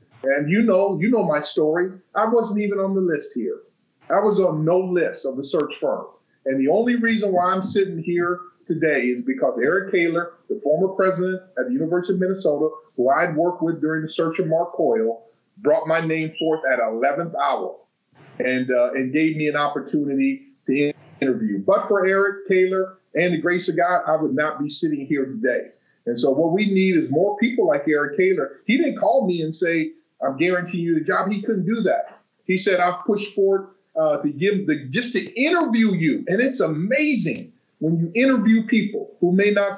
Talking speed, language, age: 205 wpm, English, 40-59